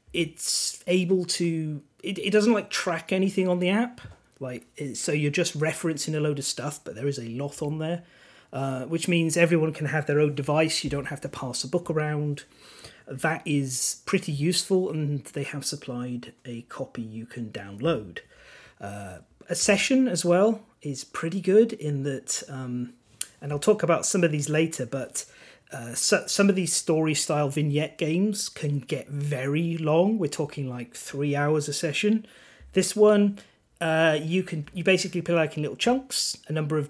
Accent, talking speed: British, 185 wpm